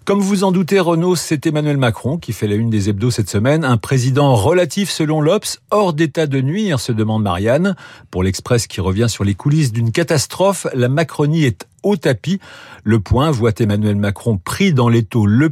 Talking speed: 195 wpm